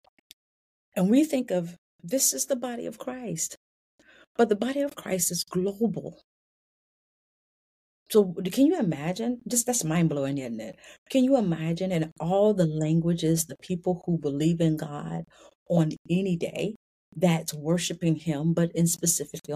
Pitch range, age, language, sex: 150-180 Hz, 40-59, English, female